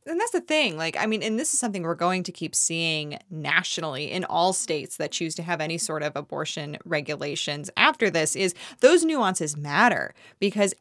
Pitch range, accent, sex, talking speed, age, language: 175-215 Hz, American, female, 200 wpm, 20-39, English